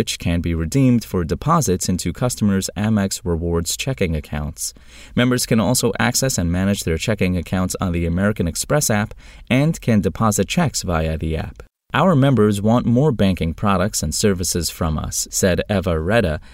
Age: 30-49